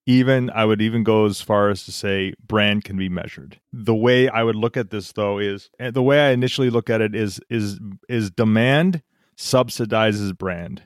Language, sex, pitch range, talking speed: English, male, 105-125 Hz, 200 wpm